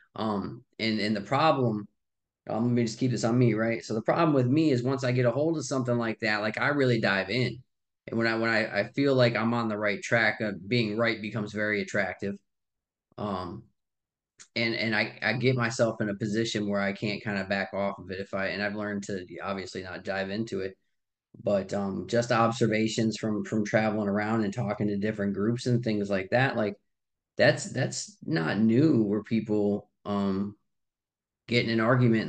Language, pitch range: English, 105-120 Hz